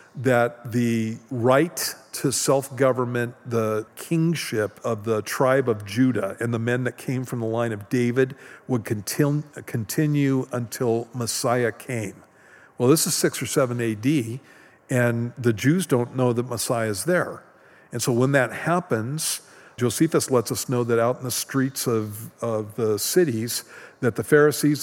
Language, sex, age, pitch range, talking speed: English, male, 50-69, 115-140 Hz, 155 wpm